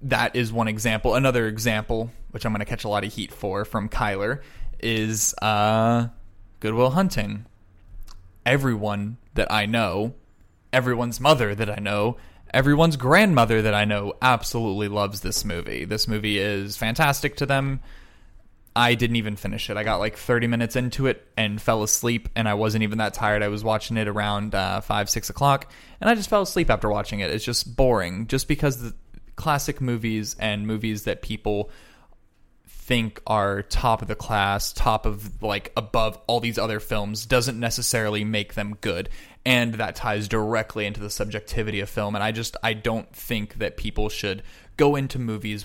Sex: male